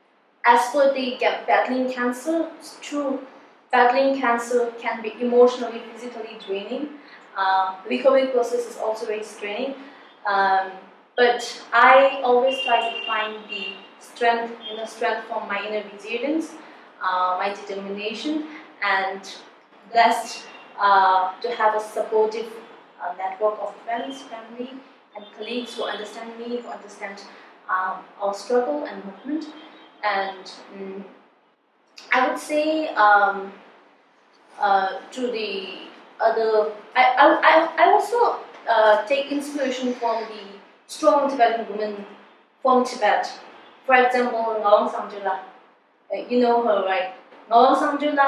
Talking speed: 125 wpm